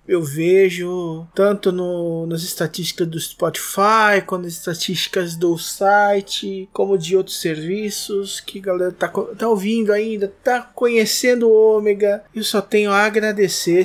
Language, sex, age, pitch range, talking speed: Portuguese, male, 20-39, 170-225 Hz, 145 wpm